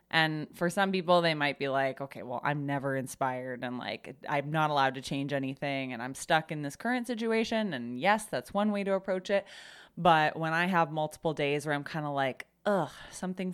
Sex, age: female, 20-39